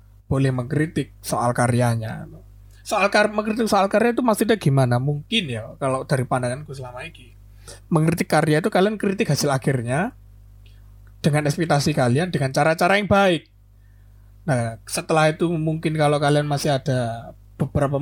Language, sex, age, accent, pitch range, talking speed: Indonesian, male, 30-49, native, 115-170 Hz, 145 wpm